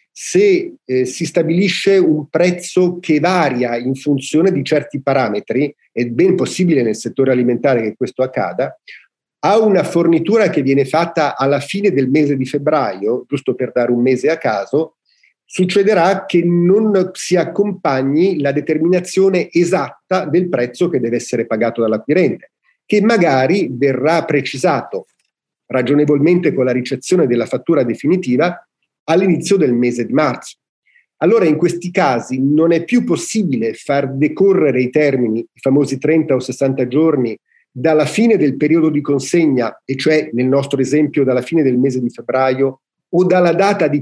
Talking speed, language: 150 wpm, Italian